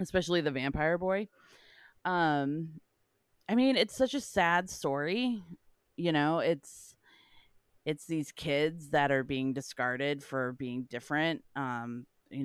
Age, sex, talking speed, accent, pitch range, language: 30-49, female, 130 wpm, American, 130-160 Hz, English